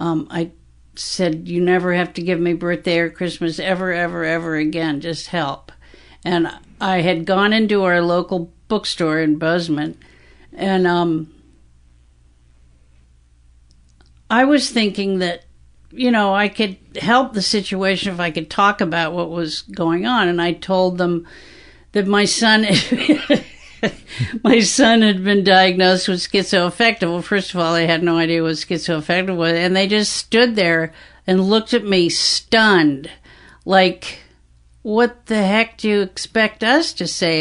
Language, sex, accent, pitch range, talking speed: English, female, American, 150-195 Hz, 150 wpm